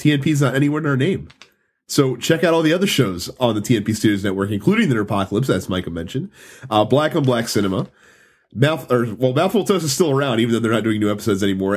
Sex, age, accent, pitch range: male, 30-49, American, 105-160 Hz